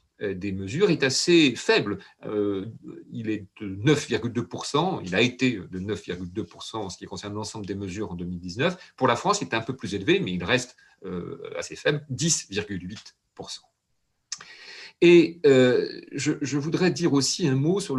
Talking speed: 155 wpm